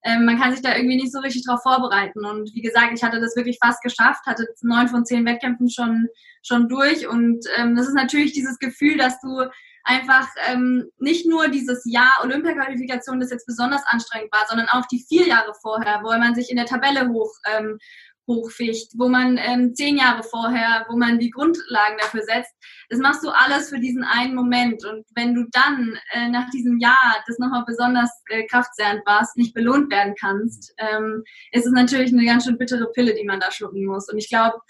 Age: 20-39